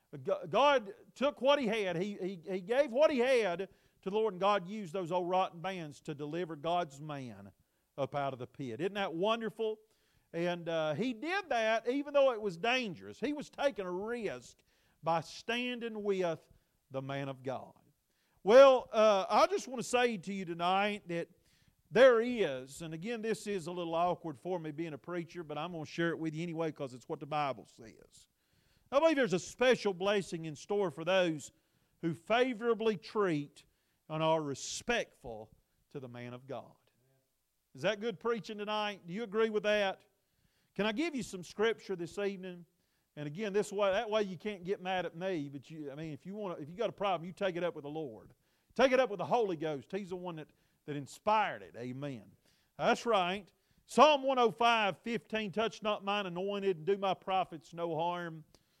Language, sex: English, male